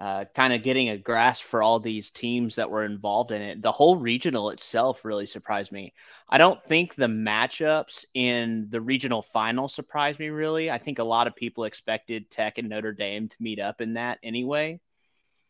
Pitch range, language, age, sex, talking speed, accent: 115-145 Hz, English, 20-39, male, 200 wpm, American